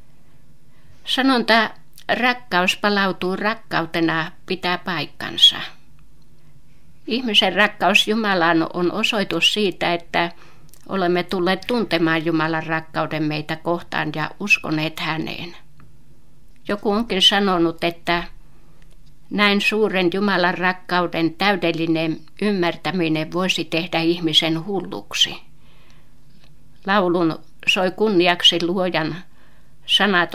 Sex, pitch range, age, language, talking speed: female, 165-200 Hz, 60-79, Finnish, 85 wpm